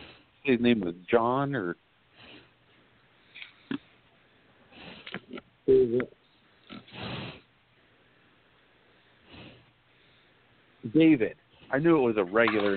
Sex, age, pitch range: male, 50-69, 110-140 Hz